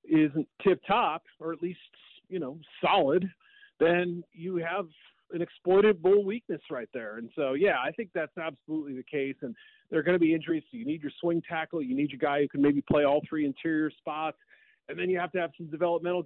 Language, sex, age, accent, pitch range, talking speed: English, male, 40-59, American, 150-190 Hz, 220 wpm